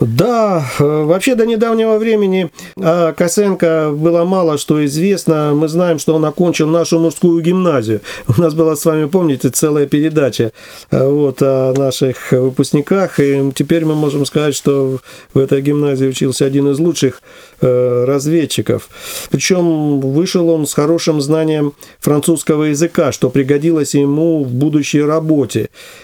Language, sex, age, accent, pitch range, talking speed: Russian, male, 50-69, native, 145-170 Hz, 130 wpm